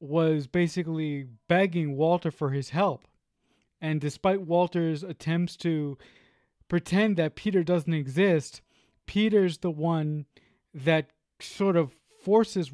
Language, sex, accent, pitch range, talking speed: English, male, American, 155-185 Hz, 115 wpm